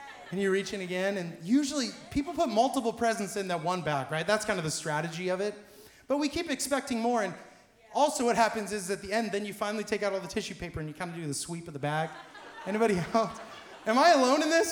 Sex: male